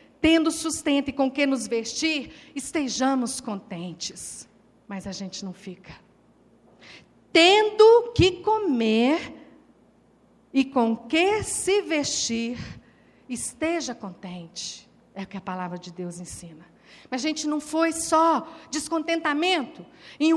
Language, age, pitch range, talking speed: Portuguese, 50-69, 275-340 Hz, 120 wpm